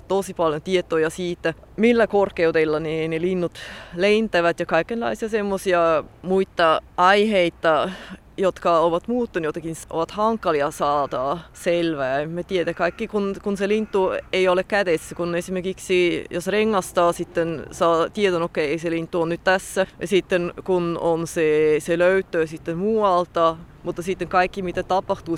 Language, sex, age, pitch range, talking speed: Finnish, female, 20-39, 165-190 Hz, 135 wpm